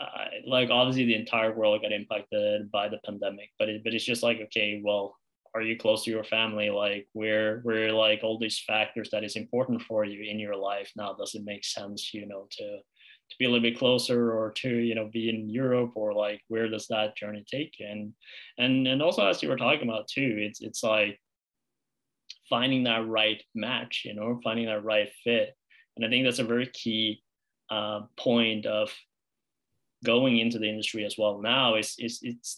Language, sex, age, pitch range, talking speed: English, male, 20-39, 105-115 Hz, 205 wpm